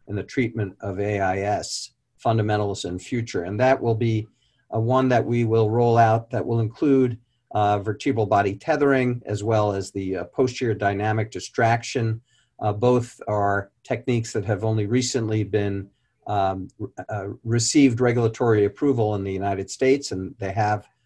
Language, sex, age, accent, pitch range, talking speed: English, male, 50-69, American, 105-125 Hz, 155 wpm